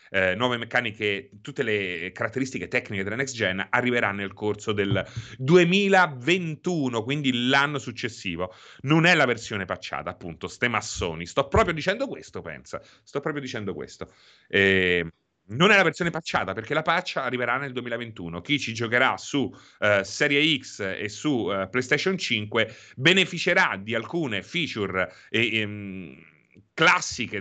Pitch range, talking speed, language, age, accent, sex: 100-135 Hz, 145 wpm, Italian, 30-49, native, male